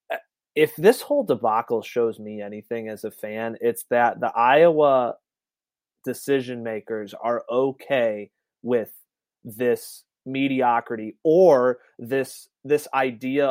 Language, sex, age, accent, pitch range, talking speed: English, male, 30-49, American, 120-135 Hz, 110 wpm